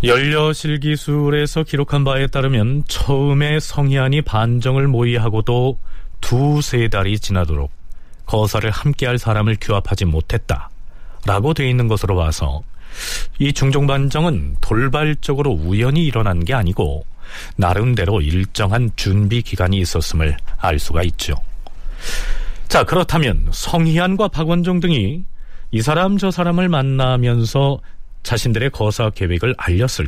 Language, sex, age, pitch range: Korean, male, 40-59, 85-145 Hz